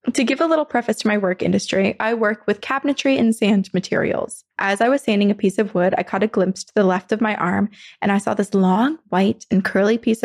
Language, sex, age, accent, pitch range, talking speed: English, female, 20-39, American, 195-230 Hz, 250 wpm